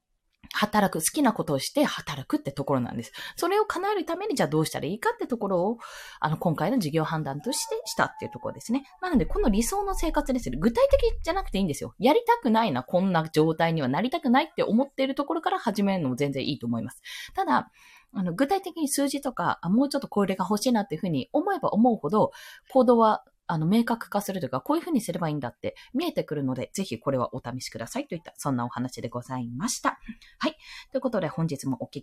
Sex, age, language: female, 20-39, Japanese